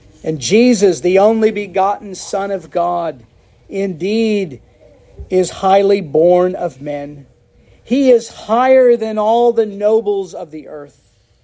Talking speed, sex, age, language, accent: 125 wpm, male, 50-69, English, American